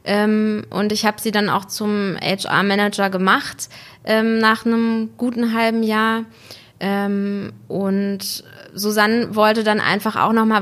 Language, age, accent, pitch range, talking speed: German, 20-39, German, 195-220 Hz, 140 wpm